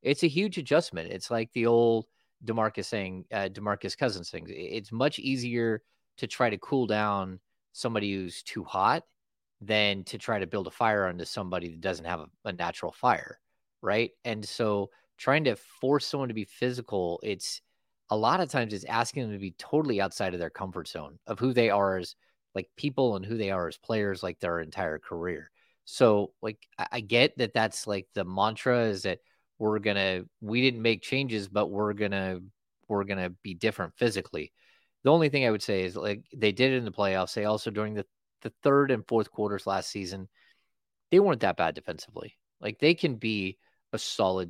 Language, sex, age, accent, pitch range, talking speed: English, male, 30-49, American, 95-120 Hz, 200 wpm